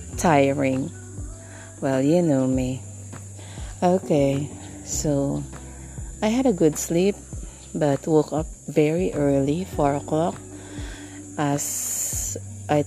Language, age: English, 30-49